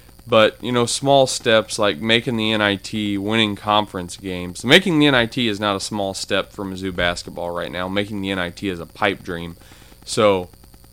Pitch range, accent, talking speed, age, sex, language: 95-115 Hz, American, 180 wpm, 20-39, male, English